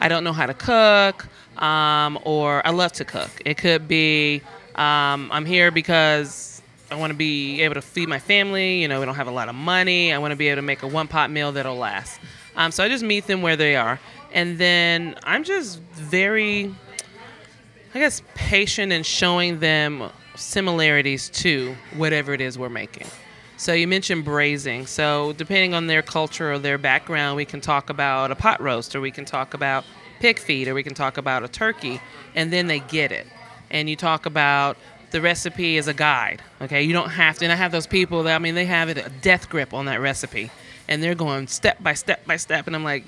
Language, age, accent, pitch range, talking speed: English, 30-49, American, 140-175 Hz, 215 wpm